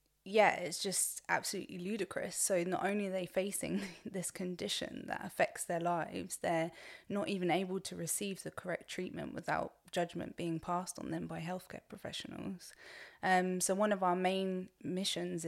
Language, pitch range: English, 170-190 Hz